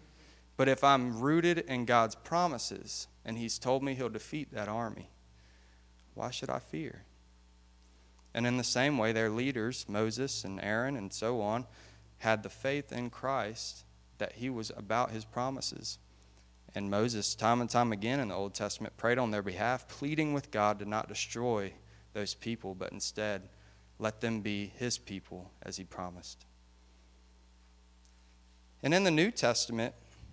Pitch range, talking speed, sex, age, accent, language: 100-120 Hz, 160 wpm, male, 30-49, American, English